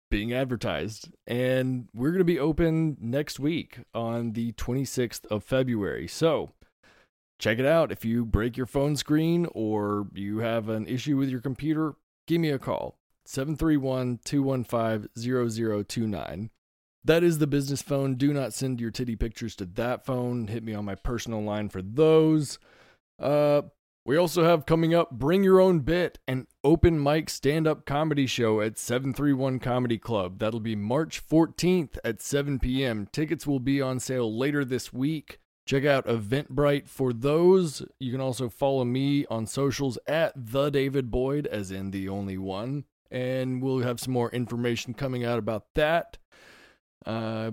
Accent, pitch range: American, 115-145 Hz